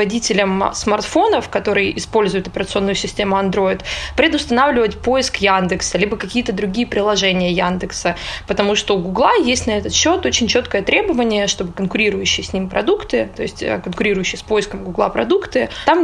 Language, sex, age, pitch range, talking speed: Russian, female, 20-39, 195-255 Hz, 140 wpm